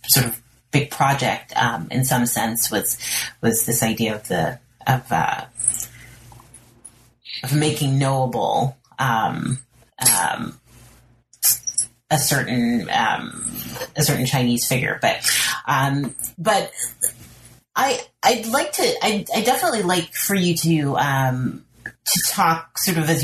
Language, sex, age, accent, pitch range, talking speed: English, female, 30-49, American, 120-155 Hz, 120 wpm